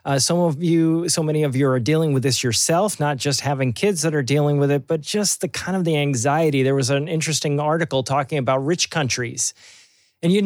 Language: English